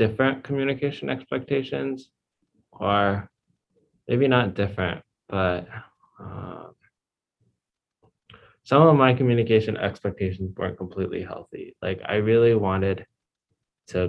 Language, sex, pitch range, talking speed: English, male, 90-100 Hz, 95 wpm